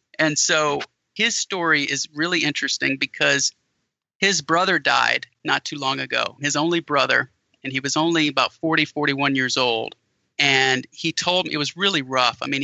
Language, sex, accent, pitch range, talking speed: English, male, American, 135-160 Hz, 175 wpm